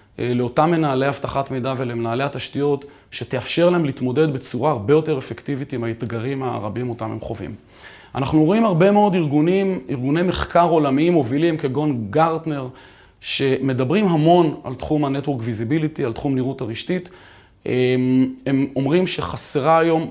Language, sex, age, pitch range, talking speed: Hebrew, male, 30-49, 125-160 Hz, 135 wpm